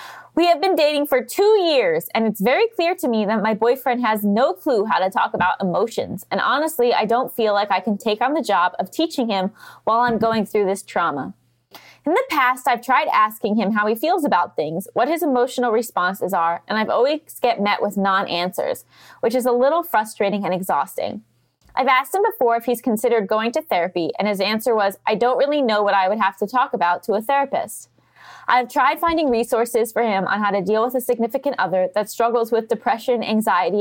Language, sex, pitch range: English, female, 200-250 Hz